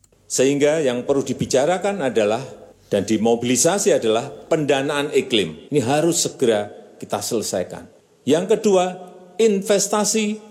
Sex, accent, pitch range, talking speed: male, native, 100-140 Hz, 105 wpm